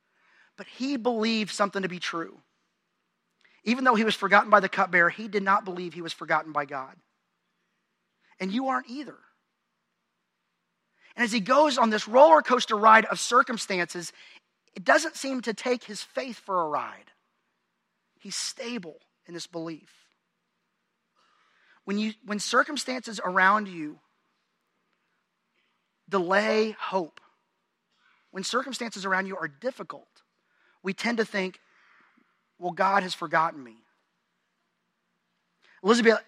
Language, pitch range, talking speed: English, 180-230 Hz, 130 wpm